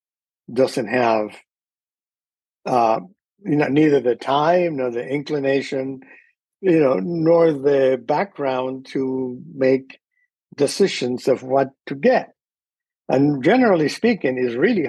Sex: male